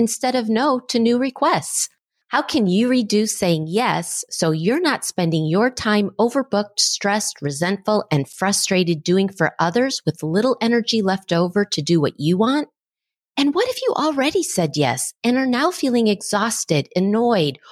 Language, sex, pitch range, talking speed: English, female, 170-245 Hz, 165 wpm